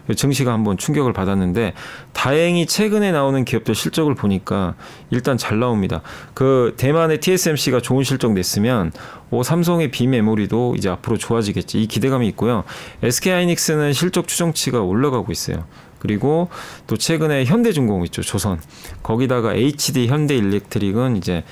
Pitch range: 105-150 Hz